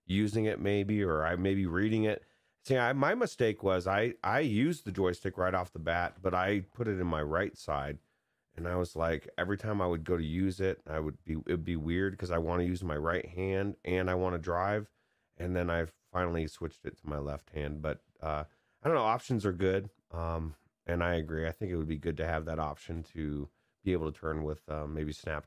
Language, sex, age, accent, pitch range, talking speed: English, male, 30-49, American, 75-95 Hz, 240 wpm